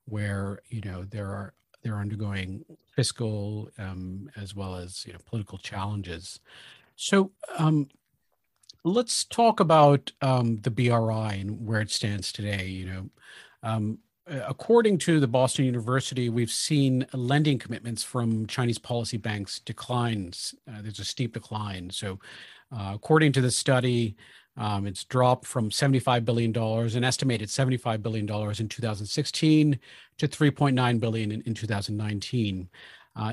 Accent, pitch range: American, 110-135 Hz